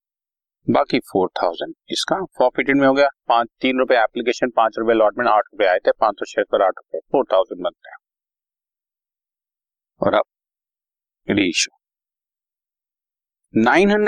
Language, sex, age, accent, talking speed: Hindi, male, 40-59, native, 115 wpm